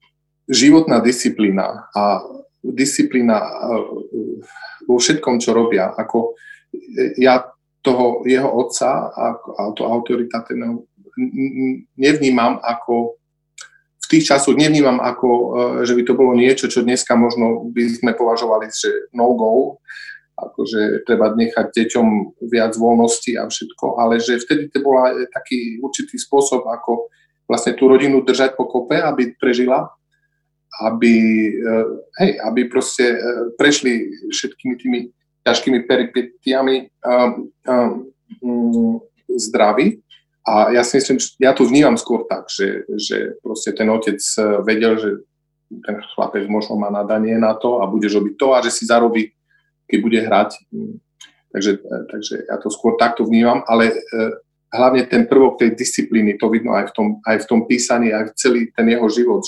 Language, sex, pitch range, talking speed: Slovak, male, 115-150 Hz, 135 wpm